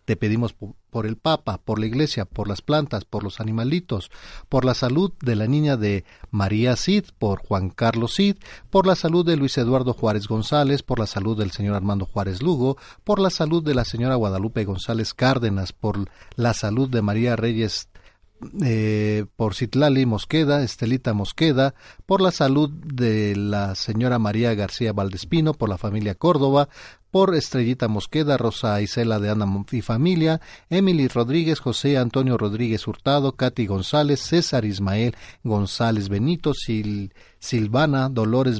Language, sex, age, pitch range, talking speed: Spanish, male, 40-59, 105-145 Hz, 155 wpm